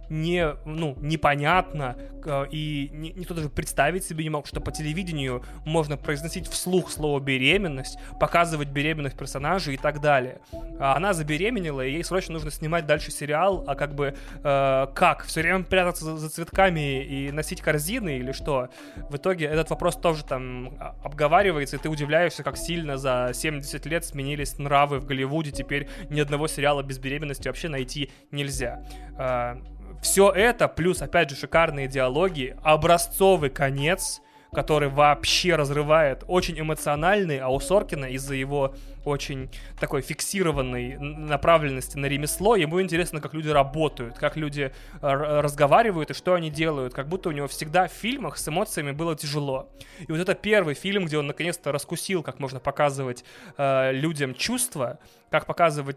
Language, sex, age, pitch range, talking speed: Russian, male, 20-39, 140-165 Hz, 150 wpm